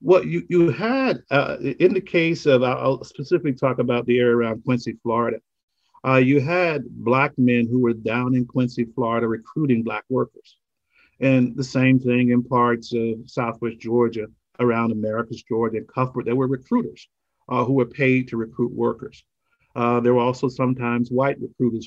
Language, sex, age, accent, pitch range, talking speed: English, male, 50-69, American, 115-135 Hz, 175 wpm